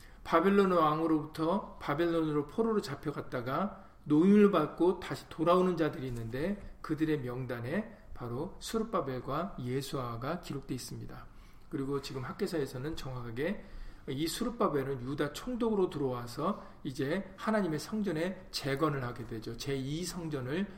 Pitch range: 130-180 Hz